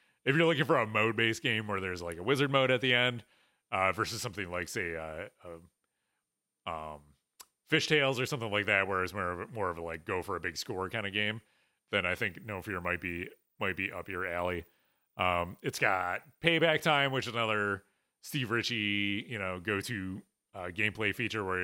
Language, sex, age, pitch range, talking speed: English, male, 30-49, 90-115 Hz, 215 wpm